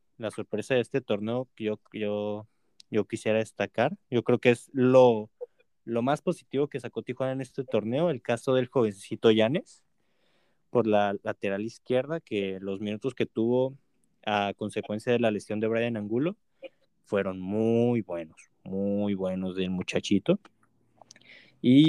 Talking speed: 150 wpm